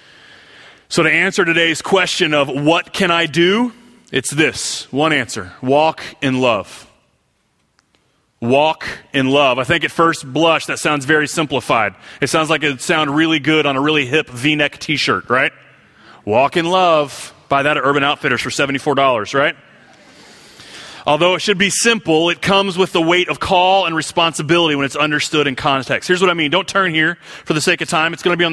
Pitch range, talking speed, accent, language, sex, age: 145-175 Hz, 190 wpm, American, English, male, 30-49